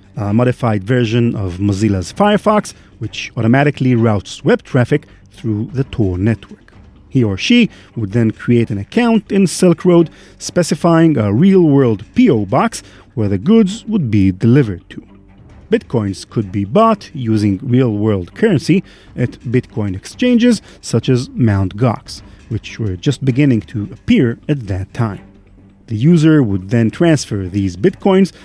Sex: male